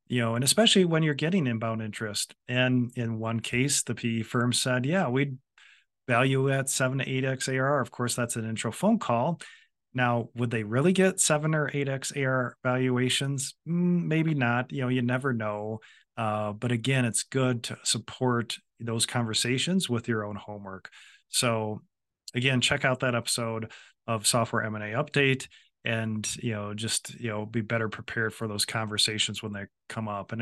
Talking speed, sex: 175 wpm, male